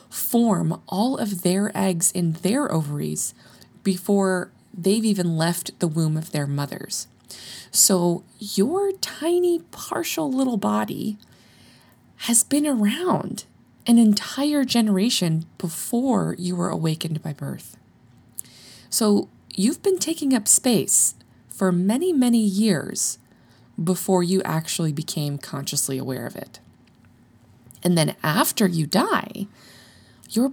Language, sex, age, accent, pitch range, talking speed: English, female, 20-39, American, 155-230 Hz, 115 wpm